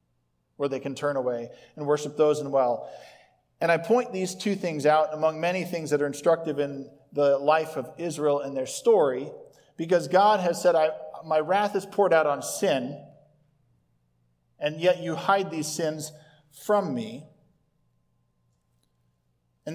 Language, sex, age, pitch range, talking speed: English, male, 40-59, 140-195 Hz, 160 wpm